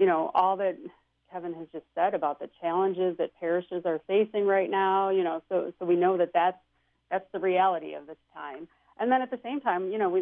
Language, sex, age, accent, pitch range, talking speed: English, female, 40-59, American, 170-220 Hz, 235 wpm